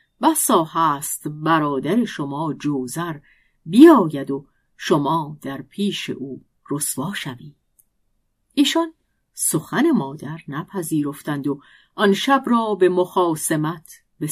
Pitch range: 145-235 Hz